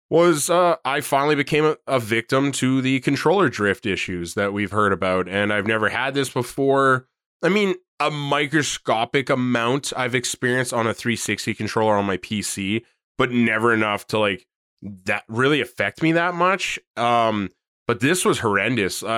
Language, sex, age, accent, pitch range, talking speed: English, male, 20-39, American, 110-130 Hz, 170 wpm